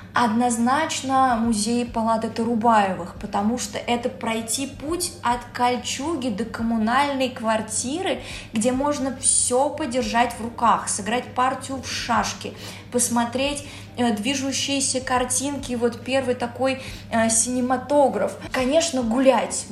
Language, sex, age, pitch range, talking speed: Russian, female, 20-39, 225-265 Hz, 105 wpm